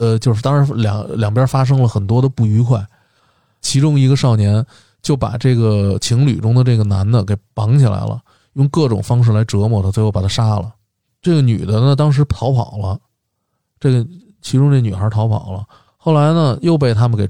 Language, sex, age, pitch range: Chinese, male, 20-39, 105-130 Hz